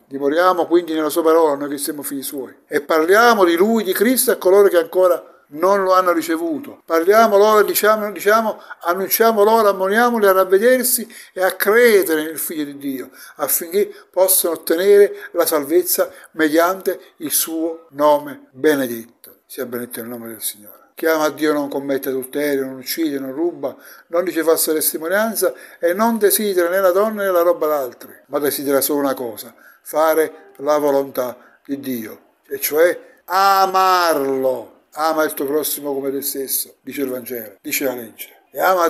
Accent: native